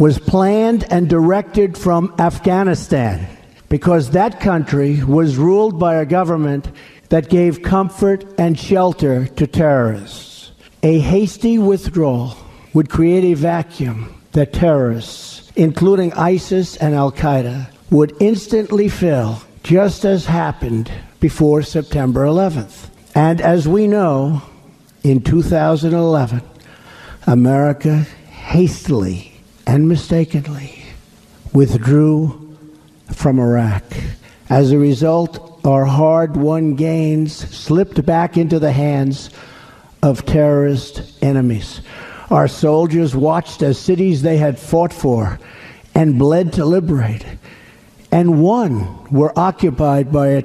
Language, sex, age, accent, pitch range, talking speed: English, male, 60-79, American, 140-175 Hz, 105 wpm